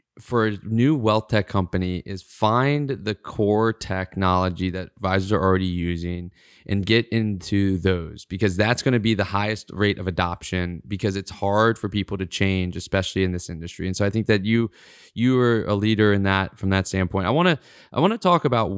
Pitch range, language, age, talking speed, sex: 95-130 Hz, English, 20-39, 205 wpm, male